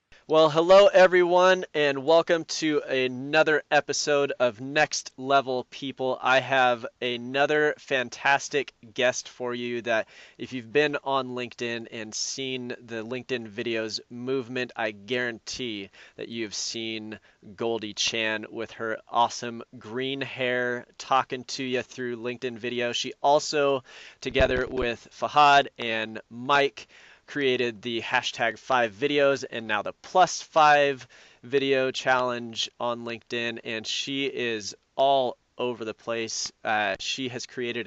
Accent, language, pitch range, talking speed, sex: American, English, 115-135 Hz, 130 wpm, male